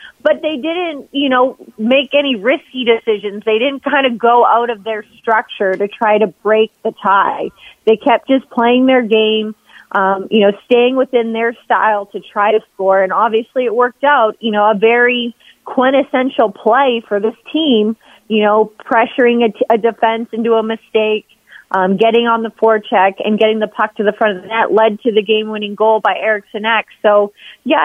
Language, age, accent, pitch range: English, 30-49, American, 210-245 Hz